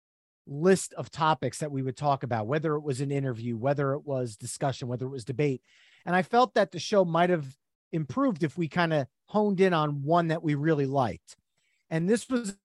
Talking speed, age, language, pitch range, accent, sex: 215 wpm, 30-49, English, 140-180 Hz, American, male